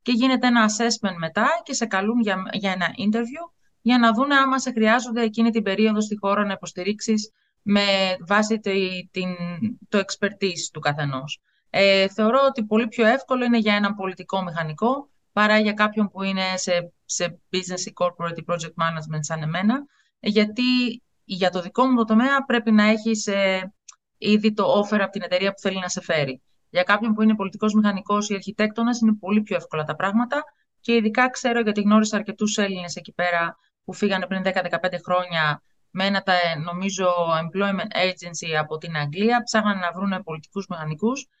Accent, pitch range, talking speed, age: native, 175-220 Hz, 175 wpm, 30-49